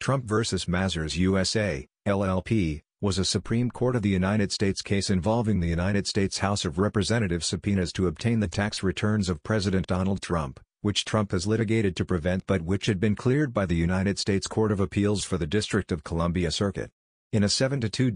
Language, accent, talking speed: English, American, 190 wpm